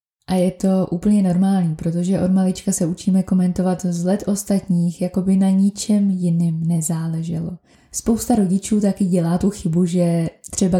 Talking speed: 155 wpm